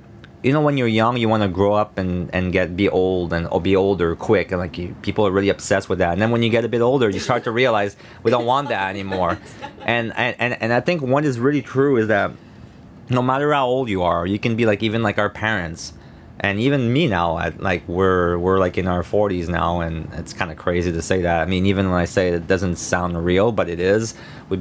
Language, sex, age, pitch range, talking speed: German, male, 30-49, 90-115 Hz, 265 wpm